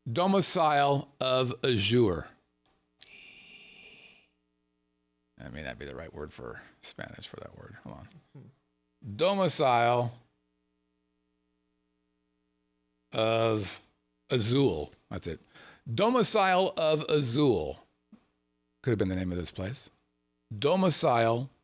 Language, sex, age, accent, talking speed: English, male, 50-69, American, 95 wpm